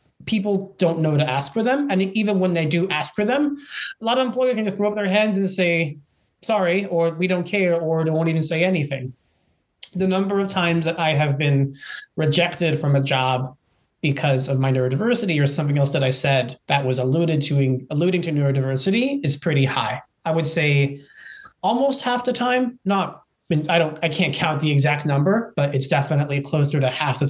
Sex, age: male, 30-49